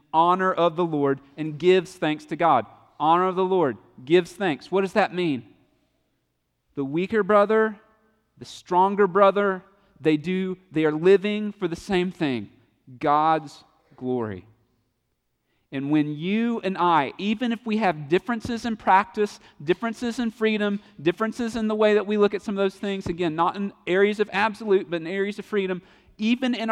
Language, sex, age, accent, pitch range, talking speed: English, male, 40-59, American, 150-205 Hz, 170 wpm